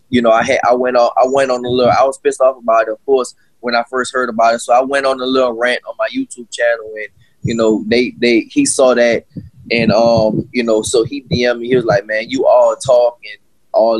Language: English